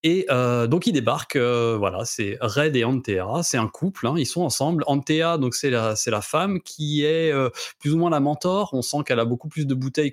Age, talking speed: 30-49, 245 wpm